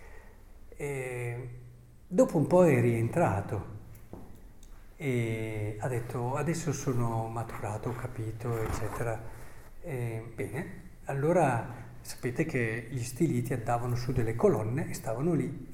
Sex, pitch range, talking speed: male, 110-140 Hz, 110 wpm